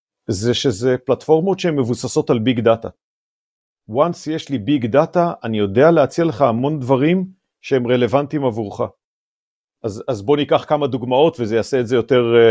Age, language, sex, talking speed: 40-59, Hebrew, male, 160 wpm